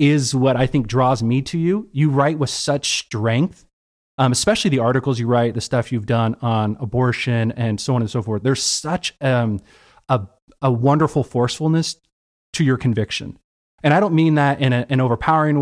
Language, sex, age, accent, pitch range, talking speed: English, male, 30-49, American, 120-150 Hz, 190 wpm